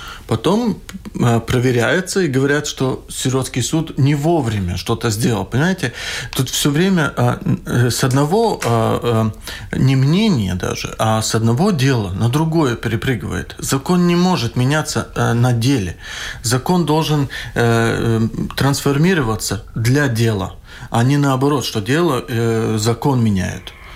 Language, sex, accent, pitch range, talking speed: Russian, male, native, 115-155 Hz, 115 wpm